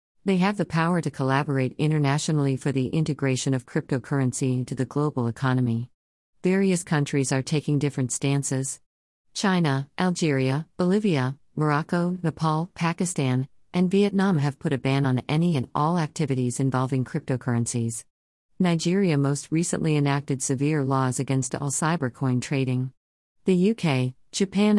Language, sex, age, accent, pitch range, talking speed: English, female, 50-69, American, 130-165 Hz, 130 wpm